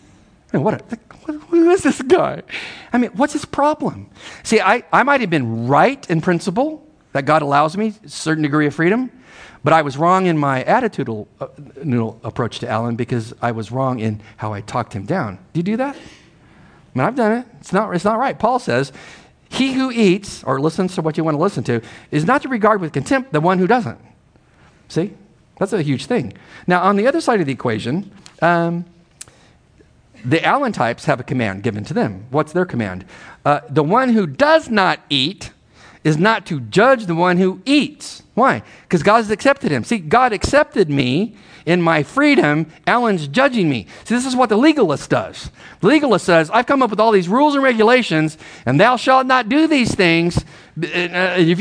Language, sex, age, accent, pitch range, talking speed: English, male, 50-69, American, 150-240 Hz, 200 wpm